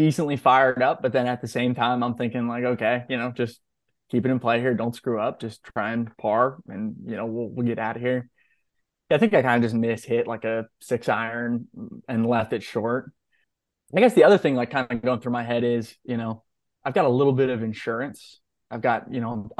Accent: American